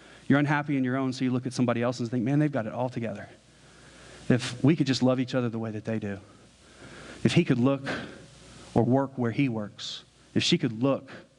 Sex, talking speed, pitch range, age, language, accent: male, 230 wpm, 115-135 Hz, 40-59, English, American